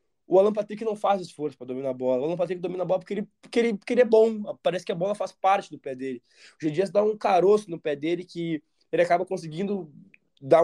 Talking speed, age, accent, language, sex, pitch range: 270 wpm, 20-39, Brazilian, Portuguese, male, 160-205 Hz